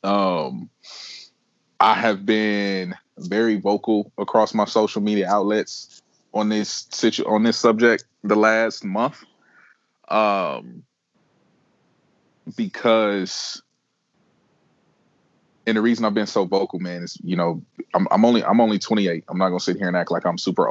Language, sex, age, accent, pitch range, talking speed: English, male, 20-39, American, 90-110 Hz, 145 wpm